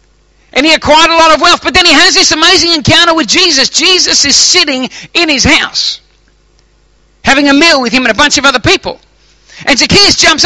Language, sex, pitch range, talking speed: English, male, 205-310 Hz, 205 wpm